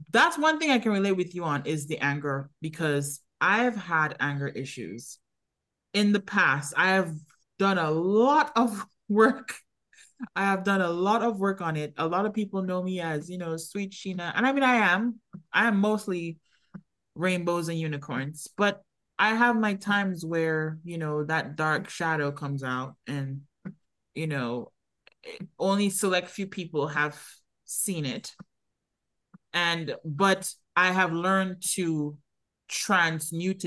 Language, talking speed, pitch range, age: English, 155 wpm, 150-205 Hz, 20-39